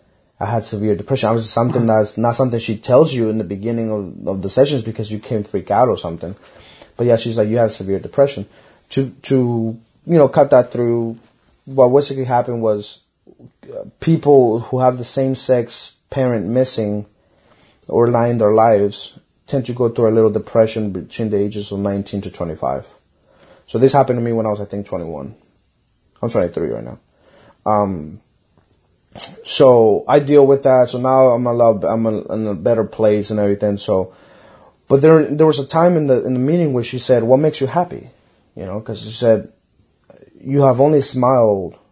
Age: 30-49